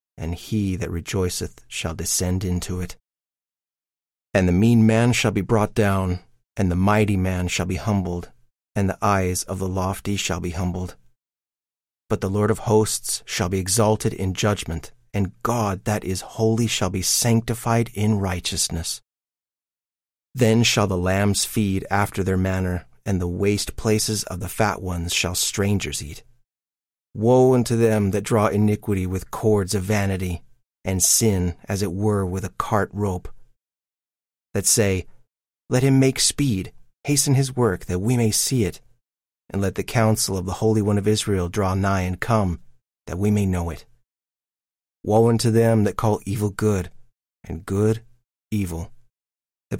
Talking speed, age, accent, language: 160 wpm, 30-49, American, English